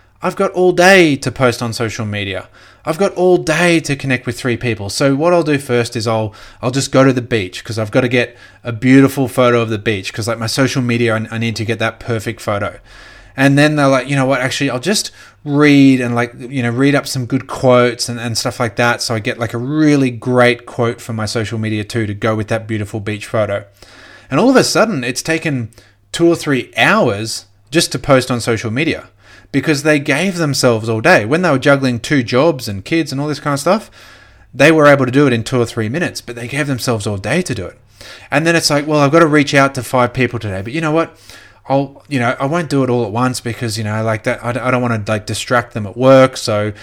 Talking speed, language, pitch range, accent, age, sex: 260 wpm, English, 110-140 Hz, Australian, 20-39, male